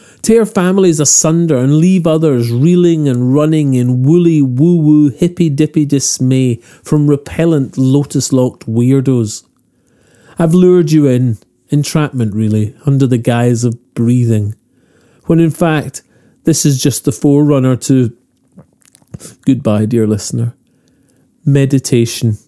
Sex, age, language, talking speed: male, 40-59, English, 110 wpm